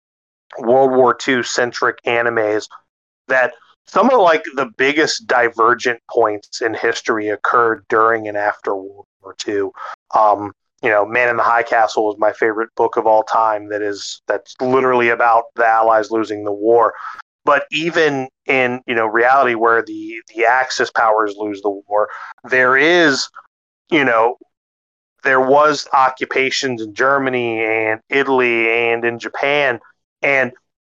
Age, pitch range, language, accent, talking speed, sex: 30-49, 115-145 Hz, English, American, 150 wpm, male